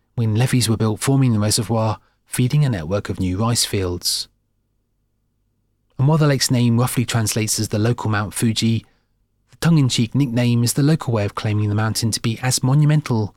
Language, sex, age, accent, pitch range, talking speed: English, male, 30-49, British, 105-125 Hz, 185 wpm